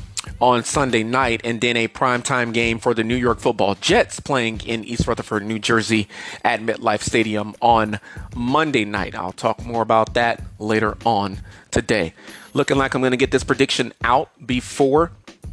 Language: English